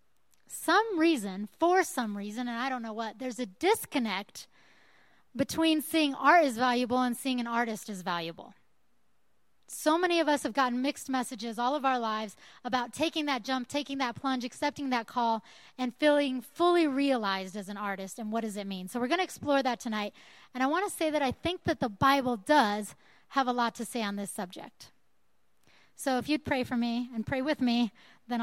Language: English